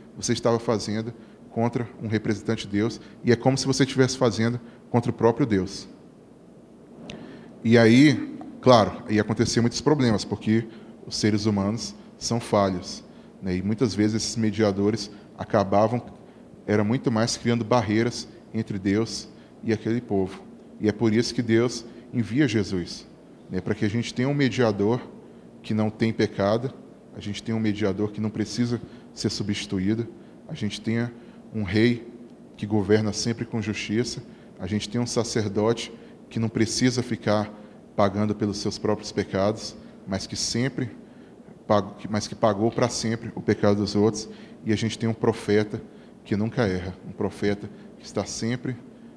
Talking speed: 155 wpm